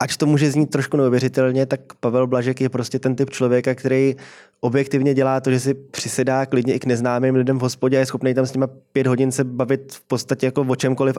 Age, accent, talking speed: 20-39, native, 230 wpm